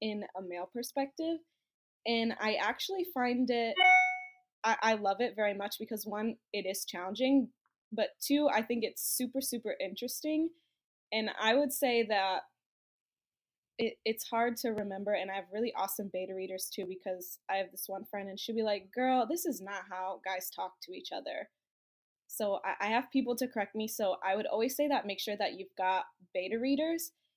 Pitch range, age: 195-245 Hz, 10-29